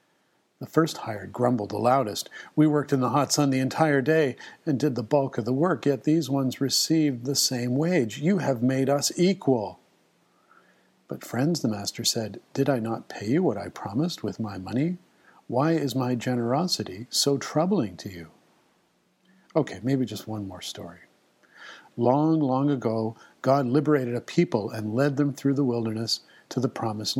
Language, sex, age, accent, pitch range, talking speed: English, male, 50-69, American, 120-145 Hz, 175 wpm